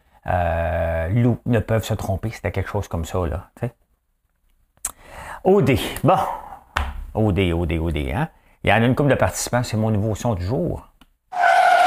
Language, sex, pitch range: English, male, 95-135 Hz